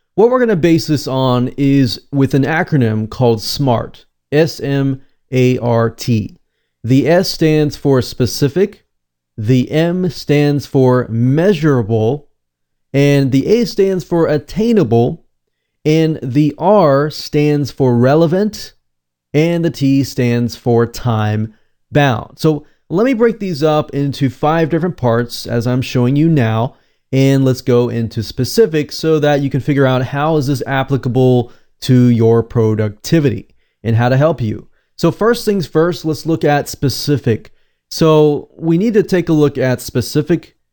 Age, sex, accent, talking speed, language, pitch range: 30-49, male, American, 145 wpm, English, 120-155 Hz